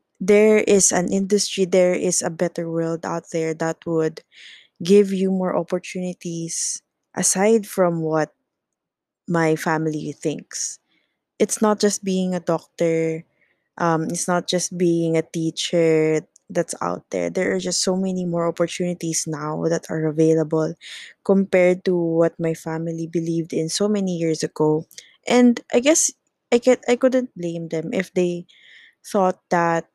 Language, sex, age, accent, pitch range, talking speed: English, female, 20-39, Filipino, 165-195 Hz, 150 wpm